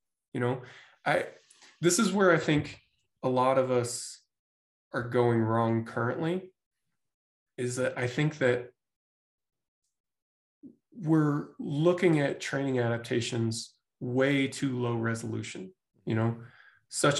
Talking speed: 115 wpm